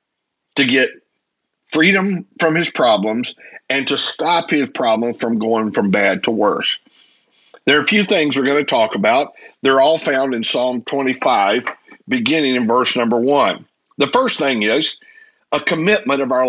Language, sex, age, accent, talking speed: English, male, 50-69, American, 165 wpm